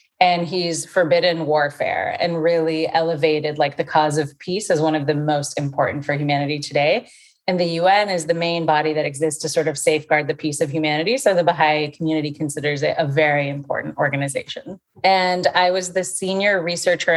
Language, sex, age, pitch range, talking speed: English, female, 30-49, 155-180 Hz, 190 wpm